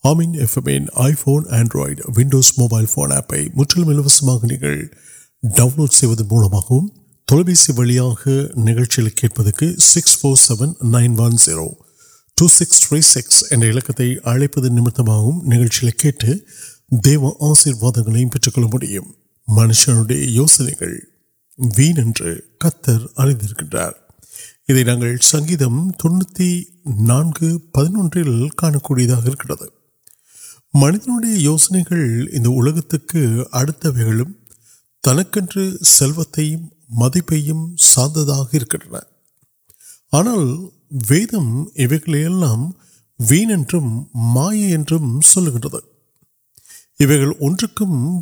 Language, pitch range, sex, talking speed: Urdu, 120-160 Hz, male, 45 wpm